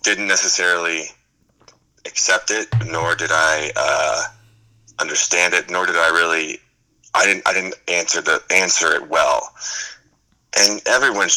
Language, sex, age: English, male, 30-49